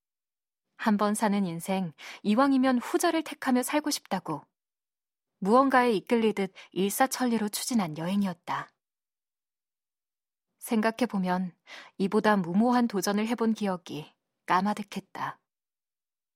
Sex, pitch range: female, 185-245 Hz